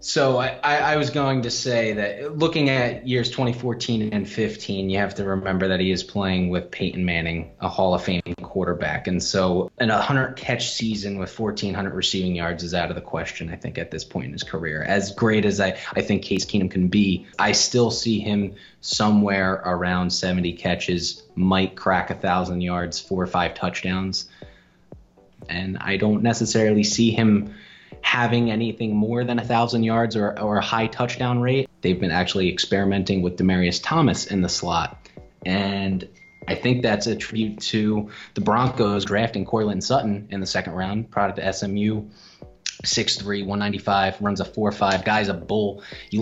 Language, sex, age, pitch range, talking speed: English, male, 20-39, 95-115 Hz, 175 wpm